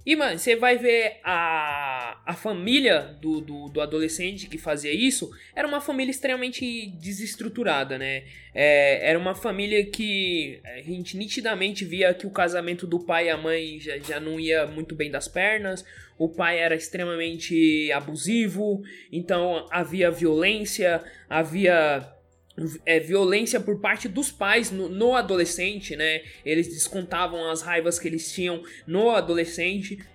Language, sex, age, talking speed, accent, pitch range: Portuguese, male, 20-39, 145 wpm, Brazilian, 170-250 Hz